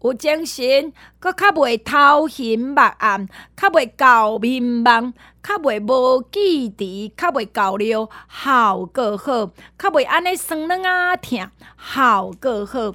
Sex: female